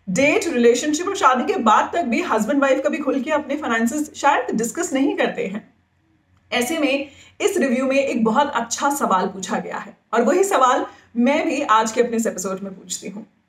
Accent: native